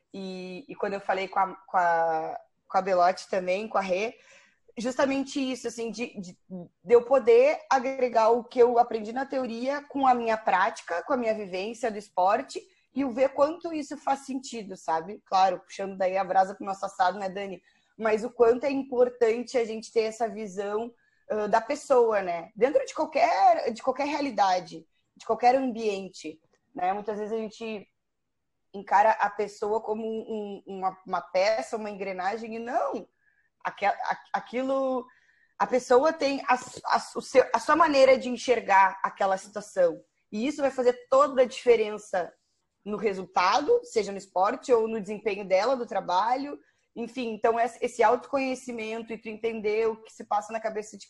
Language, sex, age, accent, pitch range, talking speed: Portuguese, female, 20-39, Brazilian, 205-260 Hz, 170 wpm